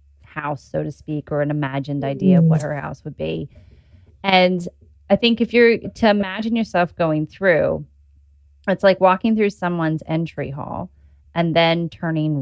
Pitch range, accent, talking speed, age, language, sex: 150-190 Hz, American, 165 wpm, 20-39, English, female